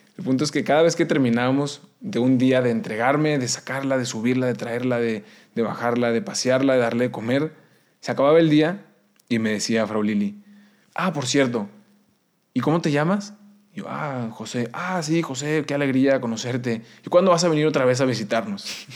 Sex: male